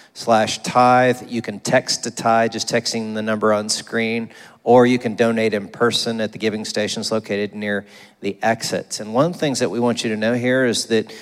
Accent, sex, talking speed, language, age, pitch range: American, male, 220 wpm, English, 40-59, 110-130 Hz